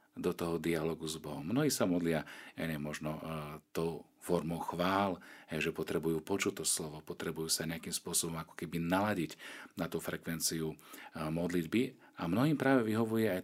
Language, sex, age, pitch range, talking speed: Slovak, male, 40-59, 80-95 Hz, 155 wpm